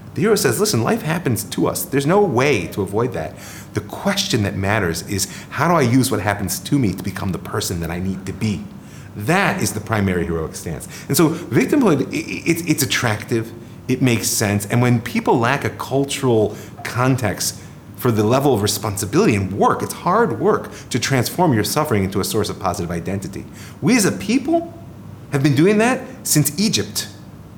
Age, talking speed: 30-49, 190 wpm